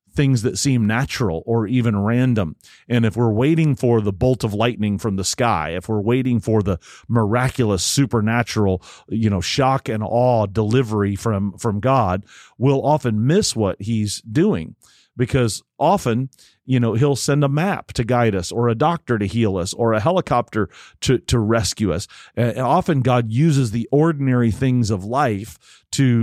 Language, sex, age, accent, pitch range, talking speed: English, male, 40-59, American, 110-130 Hz, 170 wpm